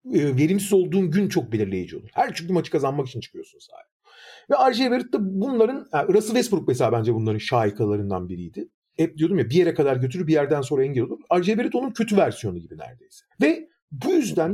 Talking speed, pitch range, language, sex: 185 wpm, 145-220 Hz, Turkish, male